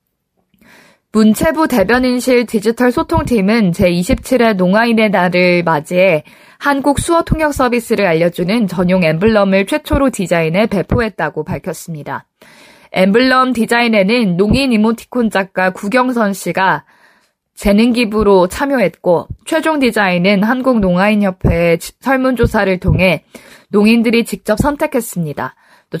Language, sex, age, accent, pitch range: Korean, female, 20-39, native, 185-250 Hz